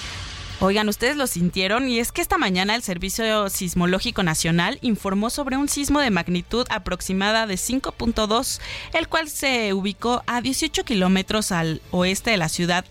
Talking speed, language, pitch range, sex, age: 160 wpm, Spanish, 170-245 Hz, female, 30-49